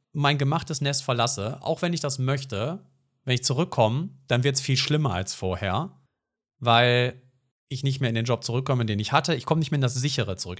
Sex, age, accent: male, 40-59, German